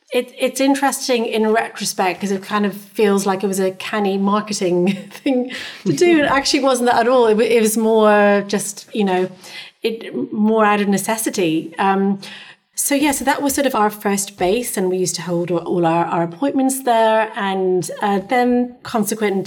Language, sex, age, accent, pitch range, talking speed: English, female, 30-49, British, 190-230 Hz, 190 wpm